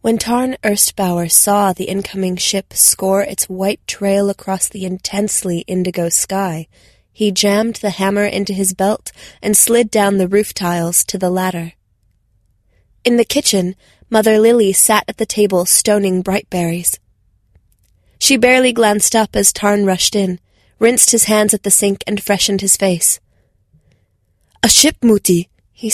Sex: female